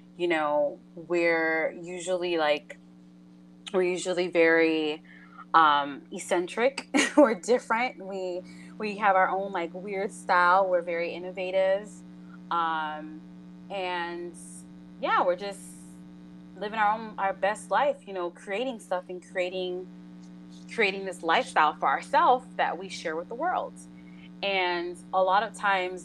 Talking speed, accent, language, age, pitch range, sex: 130 wpm, American, English, 20-39, 145-195 Hz, female